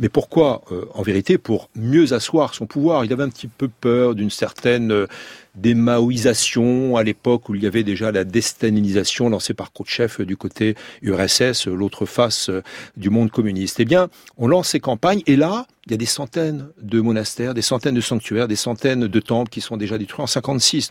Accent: French